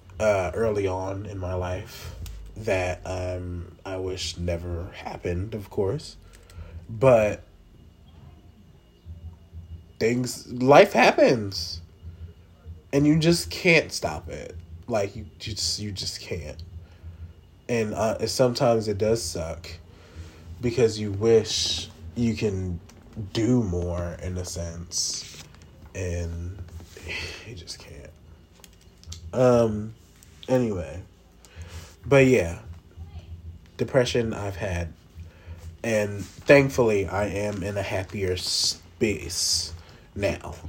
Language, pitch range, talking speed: English, 85-105 Hz, 95 wpm